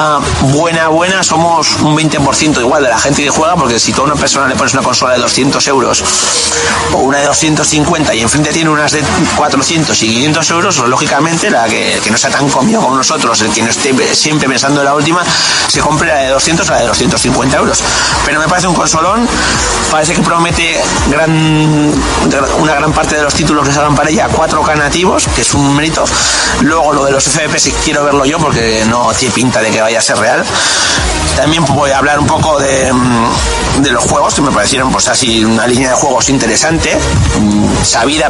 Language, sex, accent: Spanish, male, Spanish